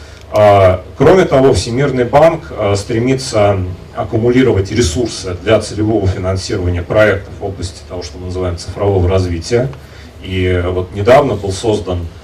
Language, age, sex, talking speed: Russian, 40-59, male, 120 wpm